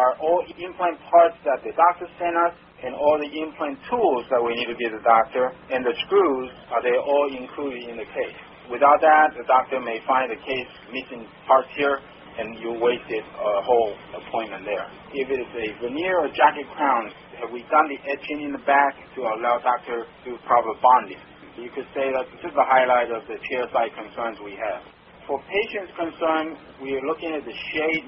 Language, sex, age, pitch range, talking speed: English, male, 40-59, 120-150 Hz, 205 wpm